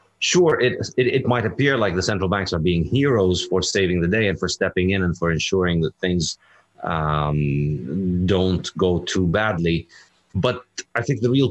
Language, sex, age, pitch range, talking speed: English, male, 30-49, 85-105 Hz, 190 wpm